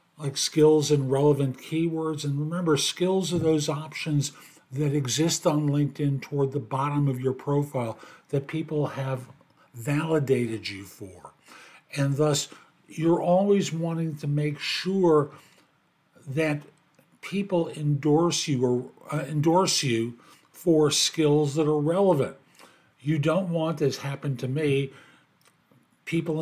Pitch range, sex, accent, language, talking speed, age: 135-165 Hz, male, American, English, 125 wpm, 50-69